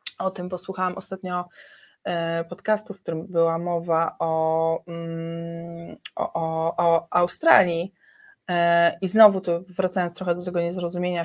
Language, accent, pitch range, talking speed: Polish, native, 165-190 Hz, 110 wpm